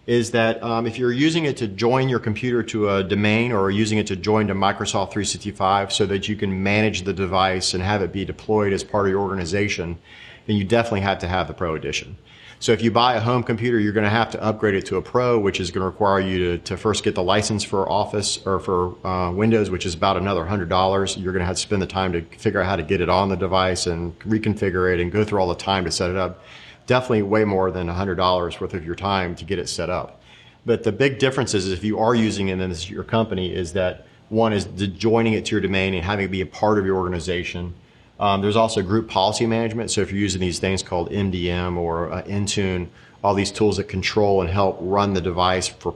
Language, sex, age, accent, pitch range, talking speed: English, male, 40-59, American, 90-110 Hz, 250 wpm